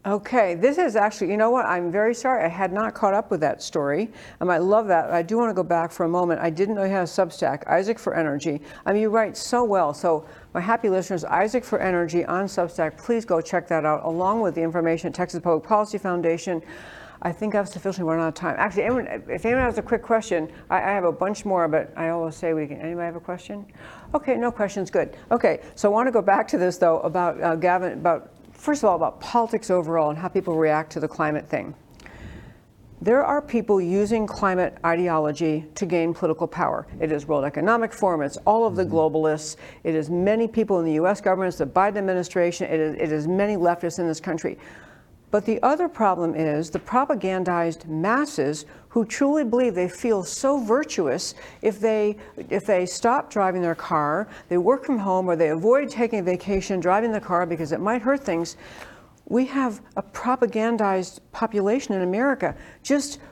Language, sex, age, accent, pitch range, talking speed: English, female, 60-79, American, 170-225 Hz, 215 wpm